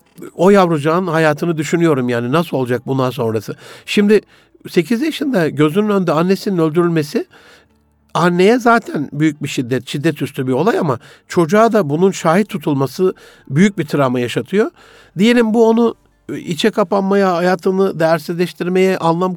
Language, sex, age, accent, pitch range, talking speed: Turkish, male, 60-79, native, 150-200 Hz, 135 wpm